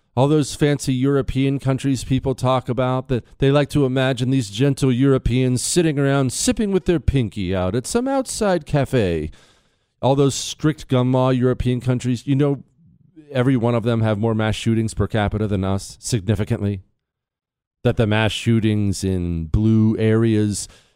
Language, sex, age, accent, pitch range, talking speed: English, male, 40-59, American, 105-135 Hz, 160 wpm